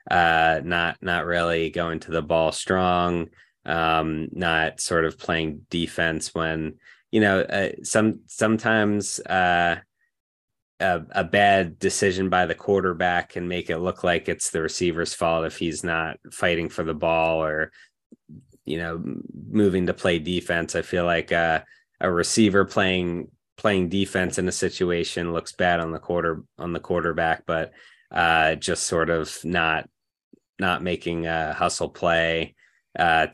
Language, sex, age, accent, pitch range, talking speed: English, male, 20-39, American, 80-90 Hz, 150 wpm